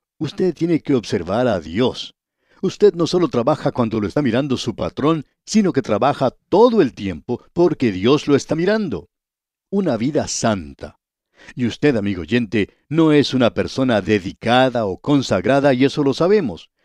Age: 60-79